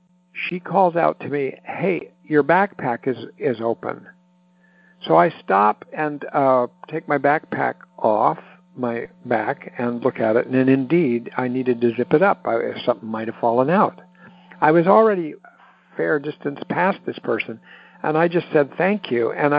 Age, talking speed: 60-79, 175 wpm